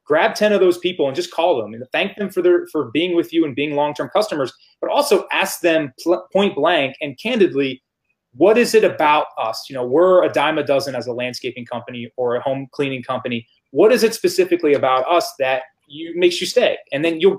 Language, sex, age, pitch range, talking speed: English, male, 30-49, 135-180 Hz, 230 wpm